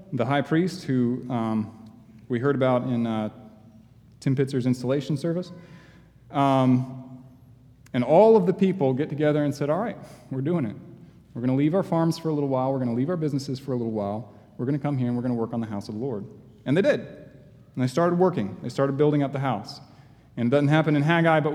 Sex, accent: male, American